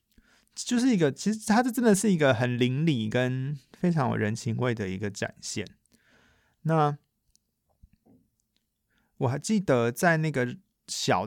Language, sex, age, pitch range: Chinese, male, 20-39, 105-135 Hz